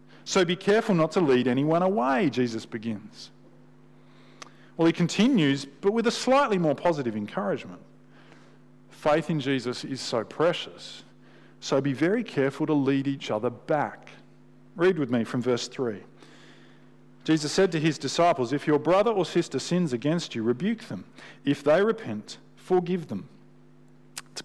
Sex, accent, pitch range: male, Australian, 130-180 Hz